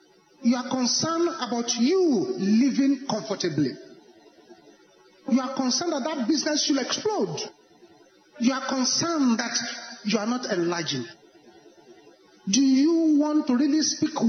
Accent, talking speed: Nigerian, 120 wpm